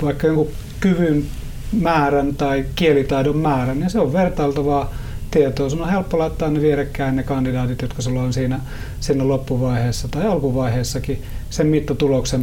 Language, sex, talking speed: Finnish, male, 145 wpm